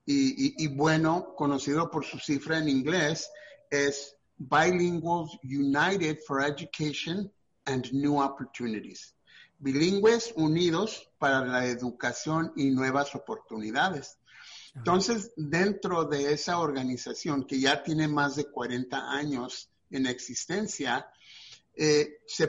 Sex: male